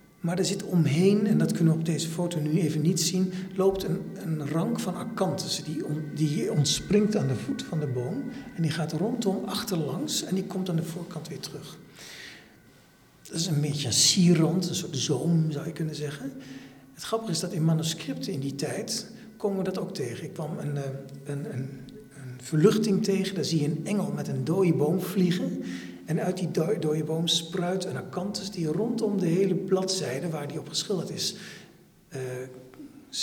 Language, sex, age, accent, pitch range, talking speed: Dutch, male, 60-79, Dutch, 150-195 Hz, 195 wpm